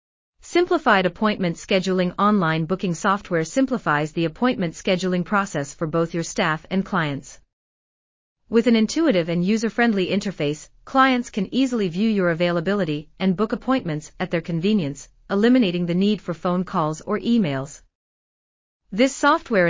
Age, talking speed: 40-59, 135 wpm